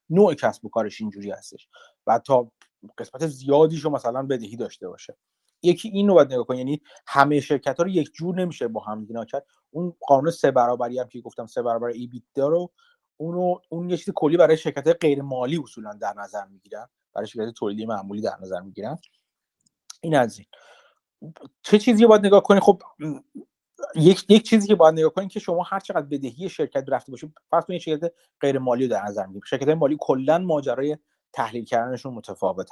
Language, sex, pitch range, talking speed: Persian, male, 125-175 Hz, 190 wpm